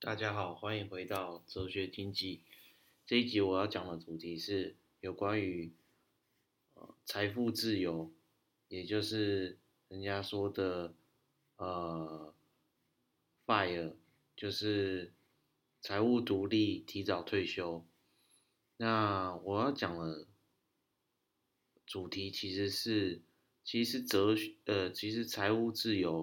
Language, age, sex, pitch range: Chinese, 30-49, male, 85-105 Hz